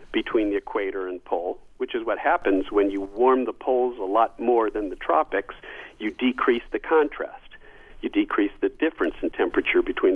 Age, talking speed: 50-69, 185 wpm